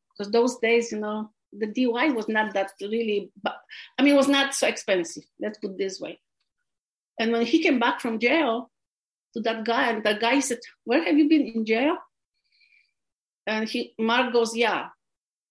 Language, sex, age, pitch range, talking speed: English, female, 50-69, 210-280 Hz, 185 wpm